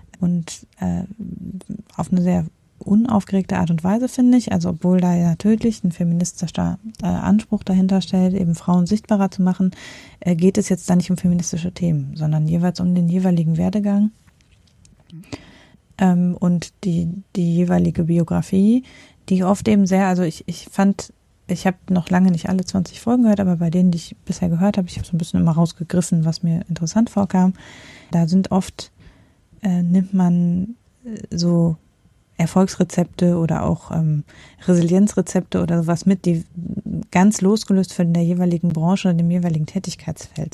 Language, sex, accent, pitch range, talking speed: German, female, German, 170-195 Hz, 160 wpm